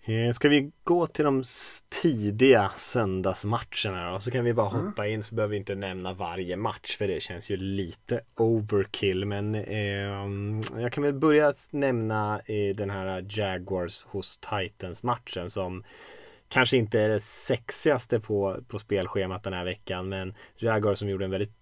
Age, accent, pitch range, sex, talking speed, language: 20-39, Norwegian, 95-115 Hz, male, 160 wpm, Swedish